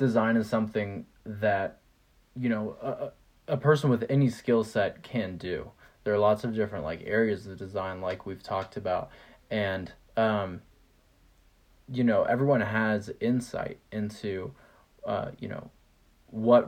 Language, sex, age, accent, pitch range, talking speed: English, male, 20-39, American, 95-115 Hz, 145 wpm